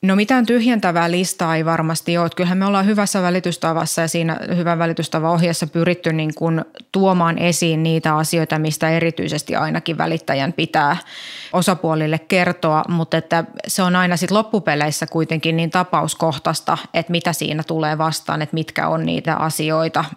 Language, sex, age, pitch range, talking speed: Finnish, female, 20-39, 160-175 Hz, 150 wpm